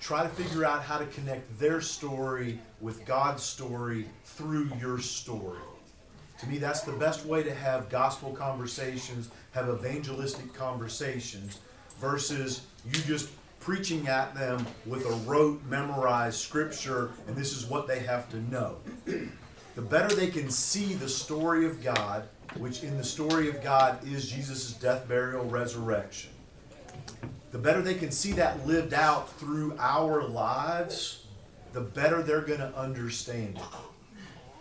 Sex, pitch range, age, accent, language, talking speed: male, 125-150 Hz, 40-59, American, English, 145 wpm